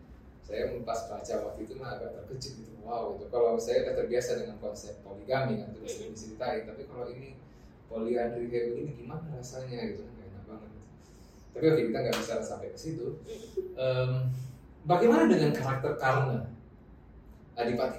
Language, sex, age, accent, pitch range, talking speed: Indonesian, male, 20-39, native, 110-155 Hz, 160 wpm